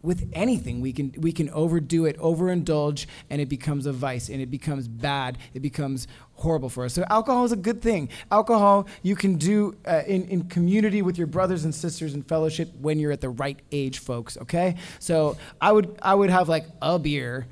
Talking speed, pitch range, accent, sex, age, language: 210 wpm, 140-175 Hz, American, male, 20-39, English